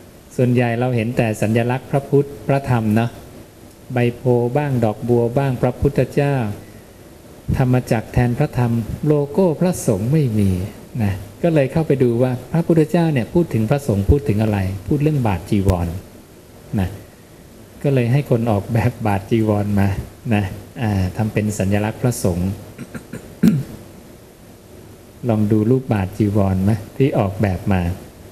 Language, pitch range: English, 105-125 Hz